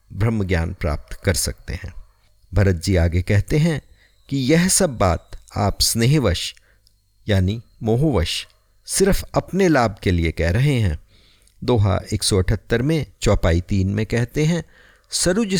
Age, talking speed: 50-69, 145 wpm